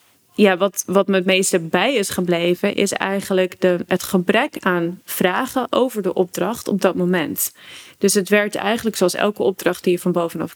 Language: Dutch